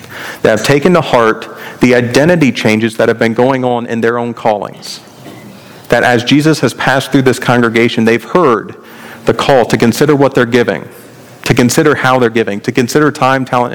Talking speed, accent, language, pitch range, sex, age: 190 wpm, American, English, 115-140 Hz, male, 40-59